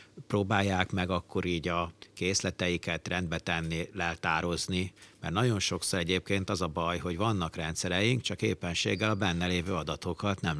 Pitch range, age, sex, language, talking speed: 85-95 Hz, 60-79, male, Hungarian, 145 wpm